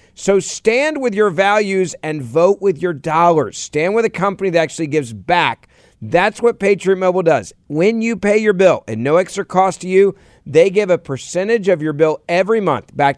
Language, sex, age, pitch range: English, male, 40-59, 140-190 Hz